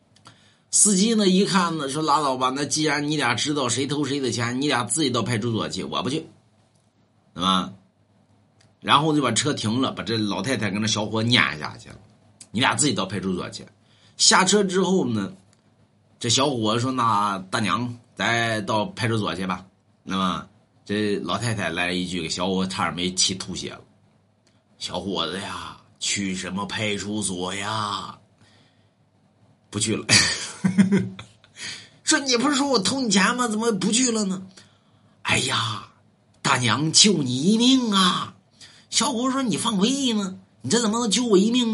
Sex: male